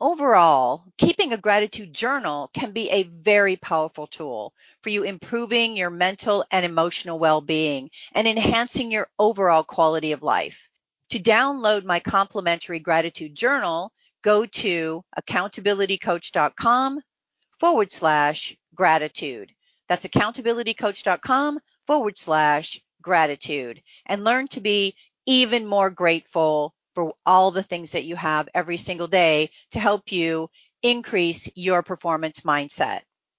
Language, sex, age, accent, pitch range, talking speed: English, female, 40-59, American, 170-235 Hz, 120 wpm